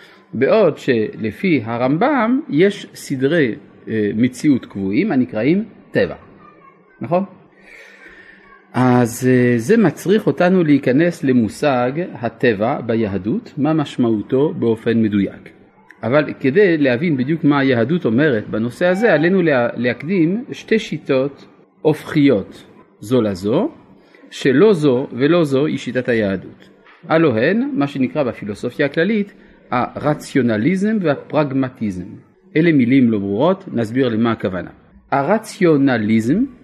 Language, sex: Hebrew, male